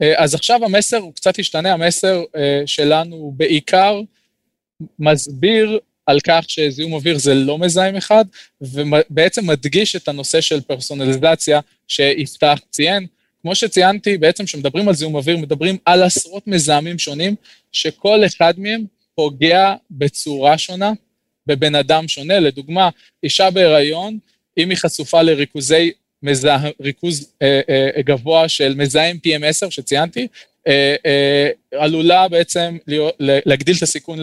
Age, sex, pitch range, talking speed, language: 20-39, male, 145-180 Hz, 115 wpm, Hebrew